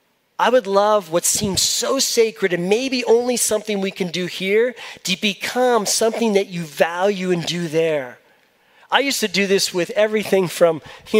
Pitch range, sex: 165-210 Hz, male